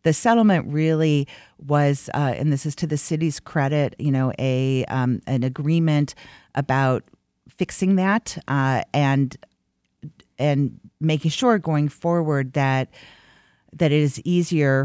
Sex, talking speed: female, 135 wpm